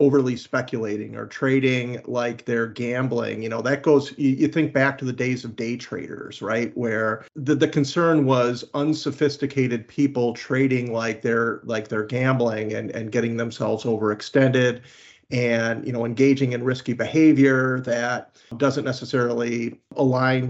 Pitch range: 115-135 Hz